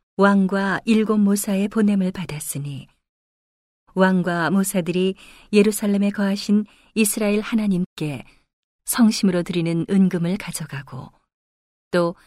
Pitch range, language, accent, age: 170-205 Hz, Korean, native, 40-59